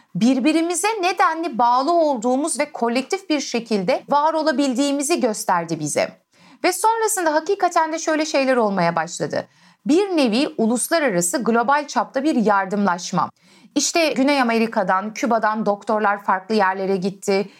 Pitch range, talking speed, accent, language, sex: 205-295 Hz, 120 wpm, native, Turkish, female